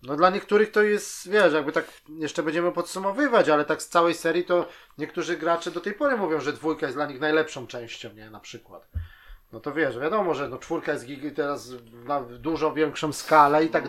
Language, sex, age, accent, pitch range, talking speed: Polish, male, 30-49, native, 140-170 Hz, 205 wpm